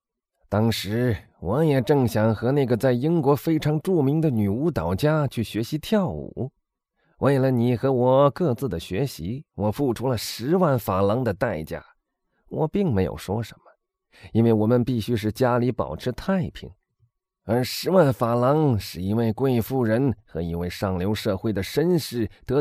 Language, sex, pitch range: Chinese, male, 110-165 Hz